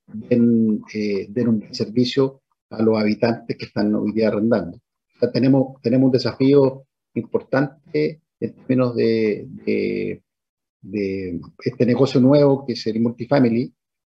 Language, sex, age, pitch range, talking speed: Spanish, male, 40-59, 110-135 Hz, 130 wpm